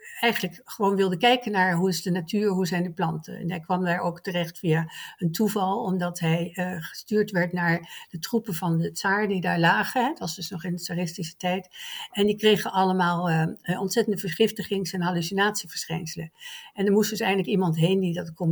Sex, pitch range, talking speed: female, 175-205 Hz, 205 wpm